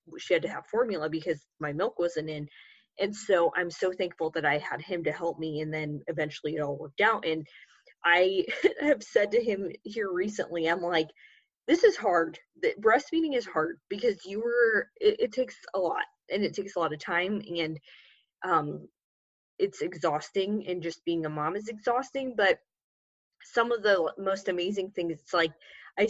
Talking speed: 190 wpm